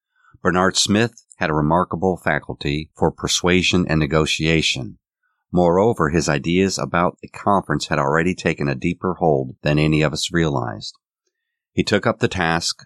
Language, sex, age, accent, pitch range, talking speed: English, male, 50-69, American, 75-95 Hz, 150 wpm